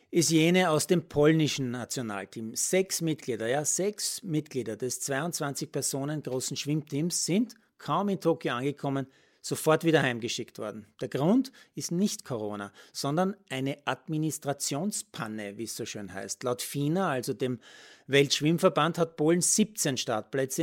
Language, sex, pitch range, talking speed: German, male, 130-170 Hz, 135 wpm